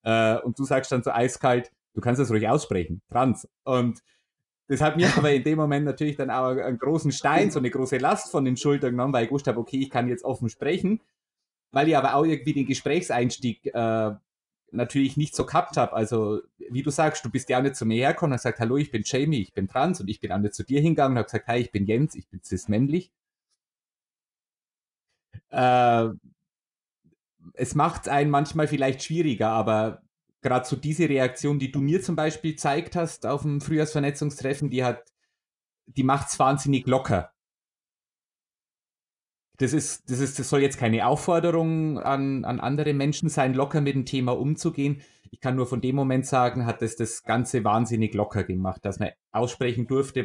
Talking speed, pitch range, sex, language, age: 190 wpm, 115-145 Hz, male, German, 30-49